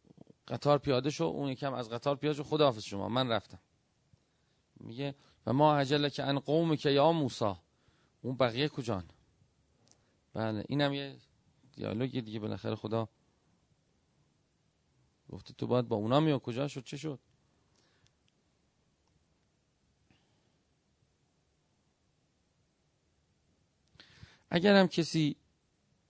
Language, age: Persian, 40-59